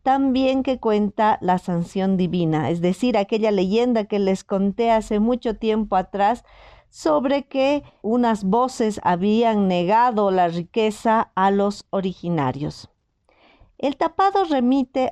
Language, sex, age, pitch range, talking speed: Spanish, female, 50-69, 195-255 Hz, 125 wpm